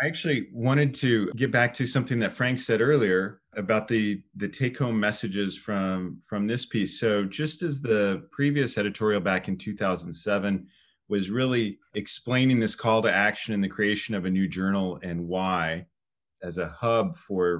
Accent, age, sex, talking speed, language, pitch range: American, 30-49, male, 170 wpm, English, 95-115 Hz